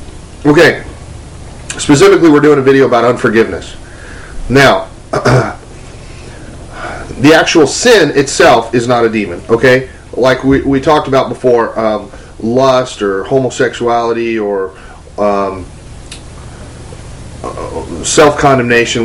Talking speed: 100 wpm